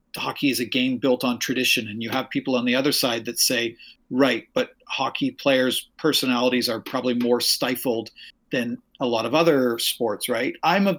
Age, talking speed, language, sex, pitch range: 40-59, 190 wpm, English, male, 120-155 Hz